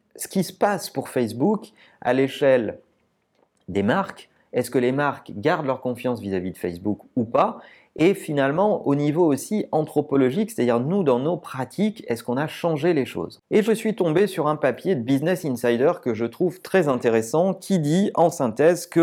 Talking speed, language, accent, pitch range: 185 wpm, French, French, 125-185 Hz